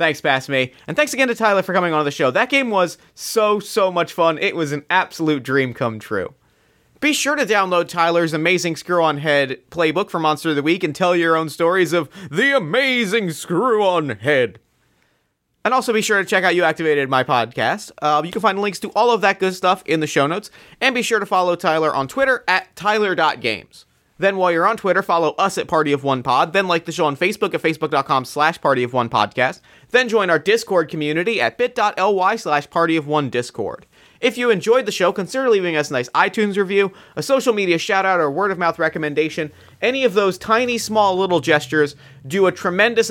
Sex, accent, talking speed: male, American, 205 wpm